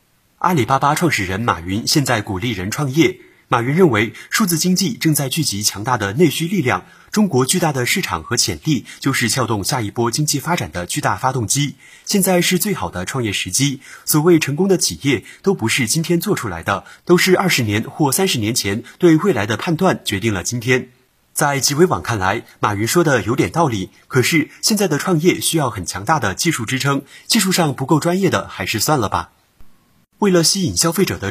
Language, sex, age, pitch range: Chinese, male, 30-49, 110-165 Hz